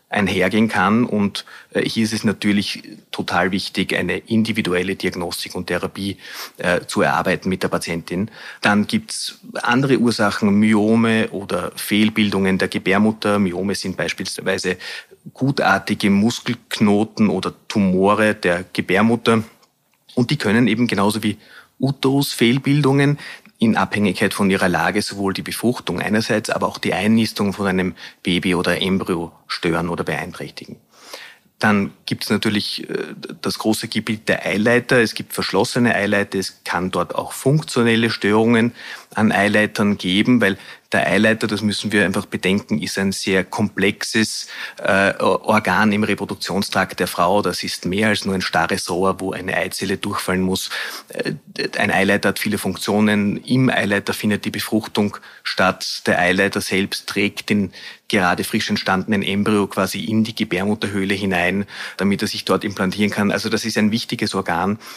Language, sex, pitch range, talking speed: German, male, 95-110 Hz, 145 wpm